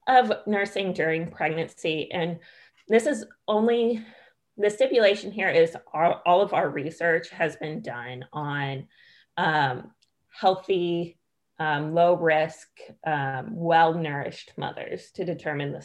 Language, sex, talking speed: English, female, 125 wpm